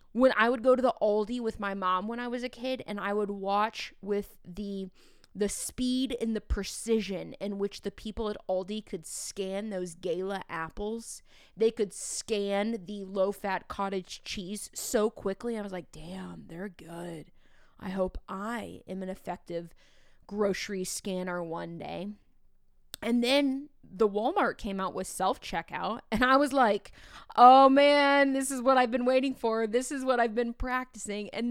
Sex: female